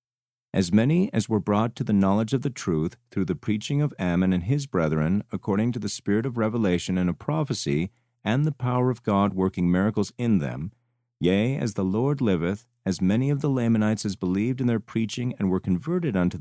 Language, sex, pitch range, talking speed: English, male, 95-120 Hz, 205 wpm